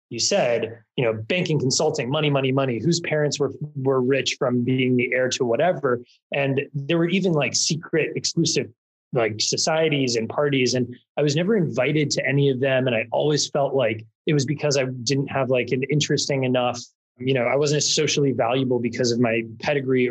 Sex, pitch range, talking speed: male, 120-150 Hz, 195 wpm